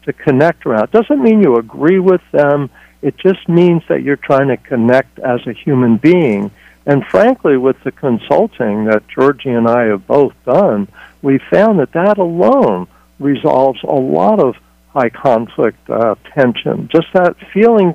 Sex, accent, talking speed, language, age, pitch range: male, American, 165 wpm, English, 60-79, 125-180 Hz